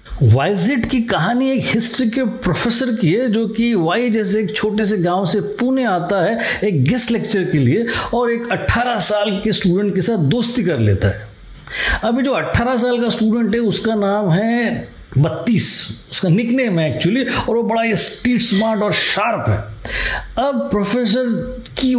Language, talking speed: Hindi, 175 wpm